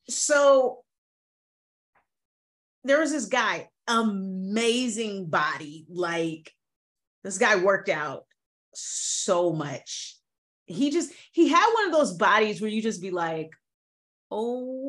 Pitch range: 205-300 Hz